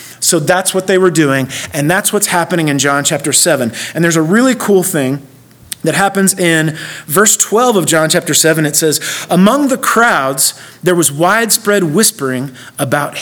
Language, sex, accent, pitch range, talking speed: English, male, American, 165-215 Hz, 175 wpm